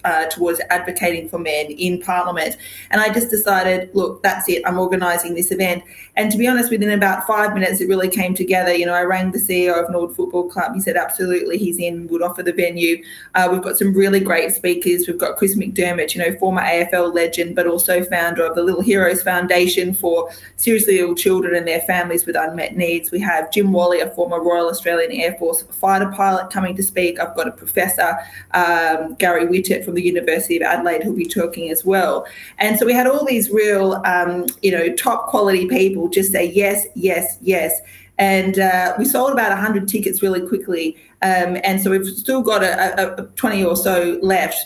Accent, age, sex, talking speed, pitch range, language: Australian, 20-39, female, 210 wpm, 175-195 Hz, English